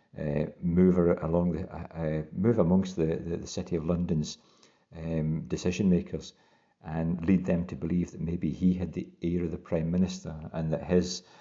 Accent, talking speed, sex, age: British, 180 wpm, male, 50-69